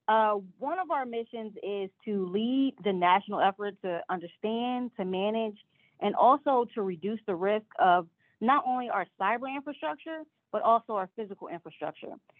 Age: 30-49